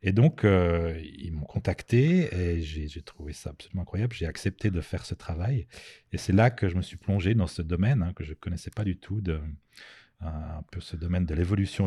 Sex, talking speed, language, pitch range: male, 240 wpm, French, 85-105 Hz